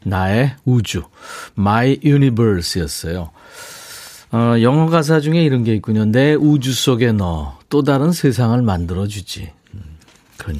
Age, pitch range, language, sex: 40-59, 105-150 Hz, Korean, male